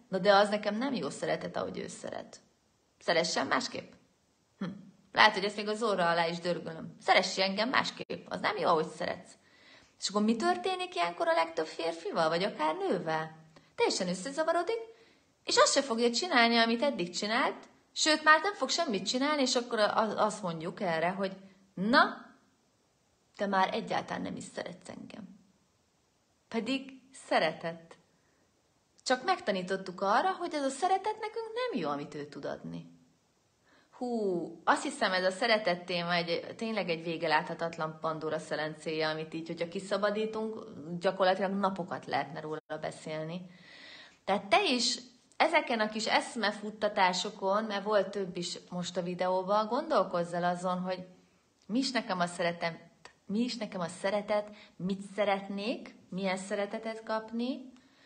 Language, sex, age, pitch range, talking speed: Hungarian, female, 30-49, 175-235 Hz, 145 wpm